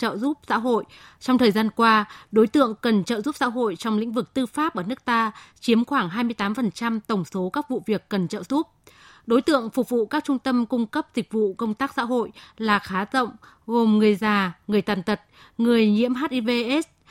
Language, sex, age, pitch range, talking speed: Vietnamese, female, 20-39, 210-255 Hz, 215 wpm